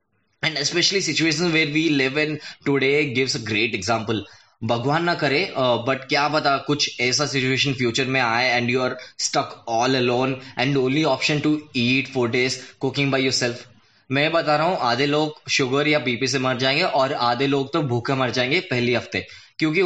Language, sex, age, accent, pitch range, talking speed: Hindi, male, 20-39, native, 120-150 Hz, 180 wpm